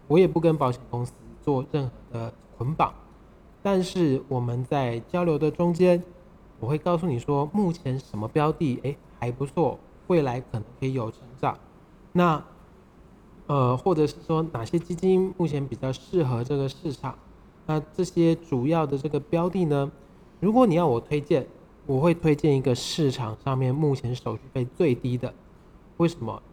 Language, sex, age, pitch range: Chinese, male, 20-39, 130-170 Hz